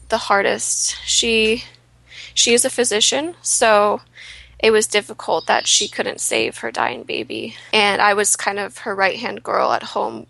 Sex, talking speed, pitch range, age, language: female, 170 wpm, 200-225 Hz, 20-39, English